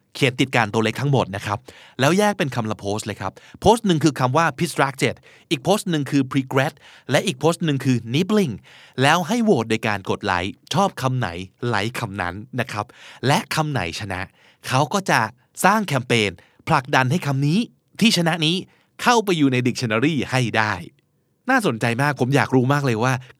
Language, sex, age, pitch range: Thai, male, 20-39, 110-150 Hz